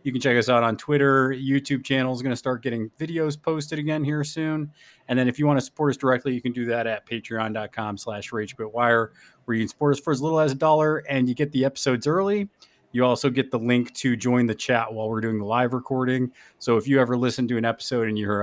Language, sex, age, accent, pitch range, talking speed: English, male, 30-49, American, 110-145 Hz, 255 wpm